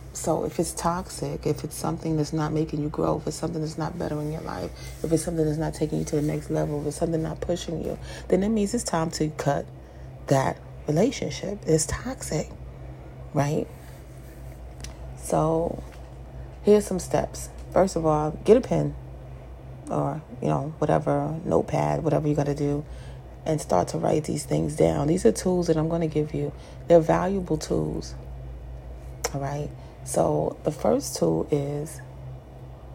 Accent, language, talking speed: American, English, 175 wpm